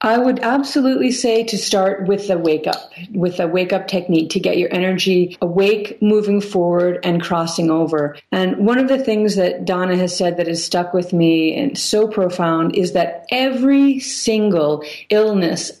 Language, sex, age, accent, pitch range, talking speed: English, female, 40-59, American, 170-205 Hz, 180 wpm